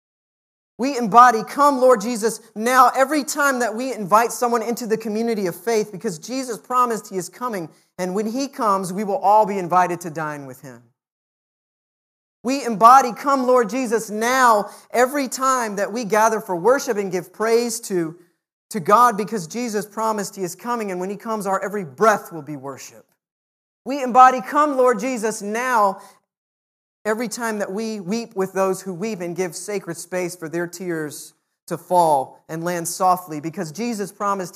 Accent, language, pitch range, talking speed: American, English, 185-245 Hz, 175 wpm